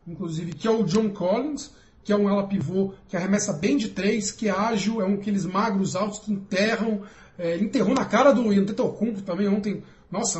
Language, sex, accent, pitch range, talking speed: Portuguese, male, Brazilian, 185-230 Hz, 200 wpm